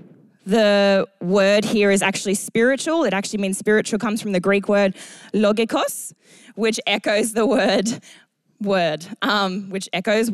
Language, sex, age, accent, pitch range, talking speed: English, female, 20-39, Australian, 200-240 Hz, 140 wpm